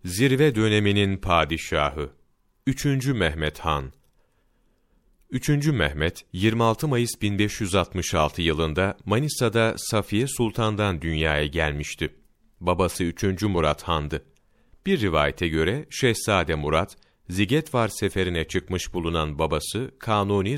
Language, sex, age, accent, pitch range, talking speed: Turkish, male, 40-59, native, 85-120 Hz, 95 wpm